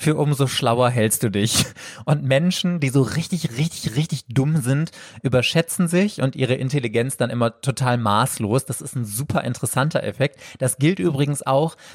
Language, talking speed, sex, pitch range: German, 170 wpm, male, 120-145 Hz